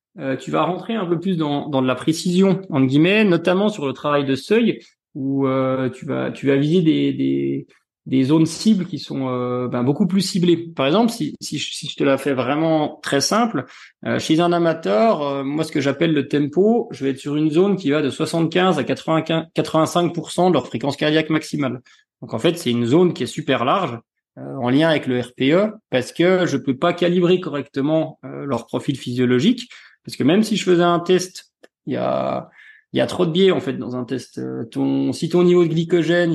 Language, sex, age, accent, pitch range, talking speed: French, male, 30-49, French, 135-175 Hz, 220 wpm